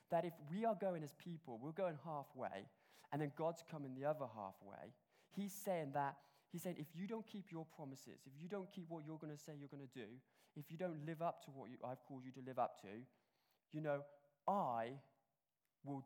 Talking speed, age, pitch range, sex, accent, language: 220 wpm, 20-39, 150-240 Hz, male, British, English